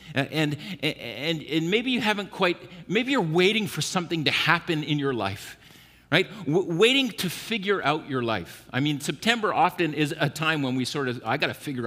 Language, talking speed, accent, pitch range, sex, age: English, 210 wpm, American, 110-180 Hz, male, 50-69